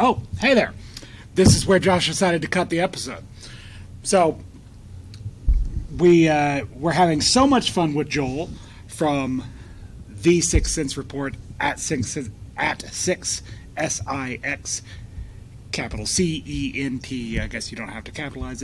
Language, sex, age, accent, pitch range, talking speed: English, male, 30-49, American, 105-145 Hz, 130 wpm